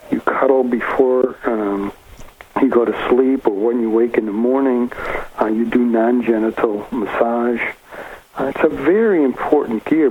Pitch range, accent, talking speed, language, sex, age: 110-130 Hz, American, 155 wpm, English, male, 60-79